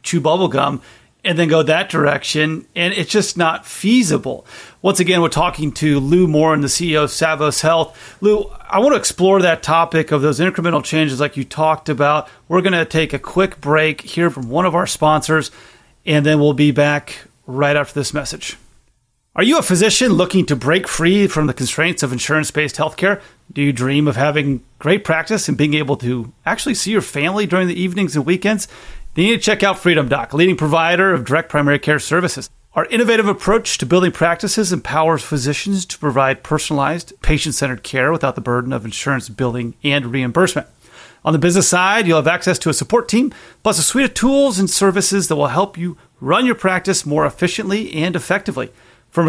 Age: 30-49